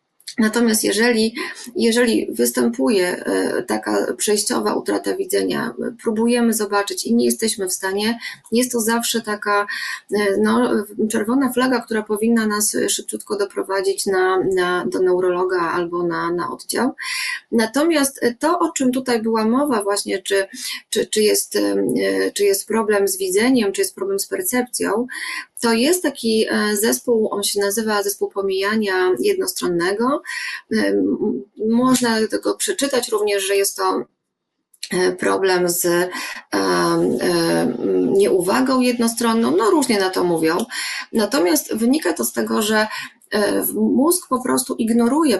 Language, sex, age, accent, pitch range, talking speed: Polish, female, 20-39, native, 185-250 Hz, 120 wpm